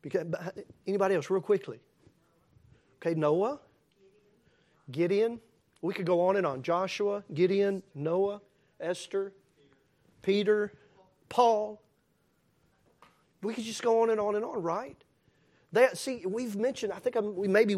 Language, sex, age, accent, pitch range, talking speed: English, male, 40-59, American, 205-320 Hz, 120 wpm